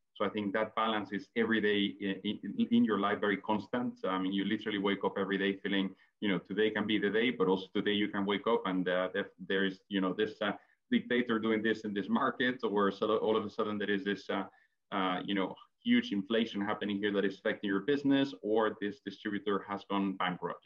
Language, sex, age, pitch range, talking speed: English, male, 30-49, 100-115 Hz, 230 wpm